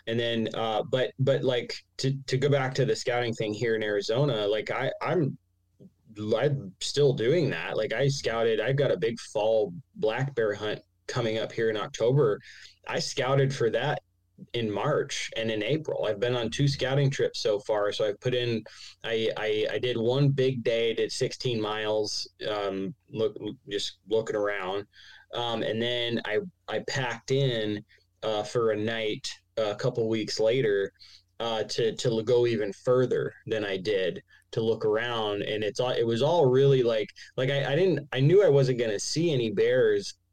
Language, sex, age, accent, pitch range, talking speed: English, male, 20-39, American, 110-145 Hz, 185 wpm